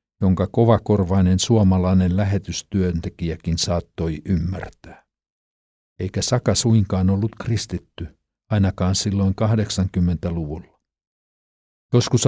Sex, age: male, 60-79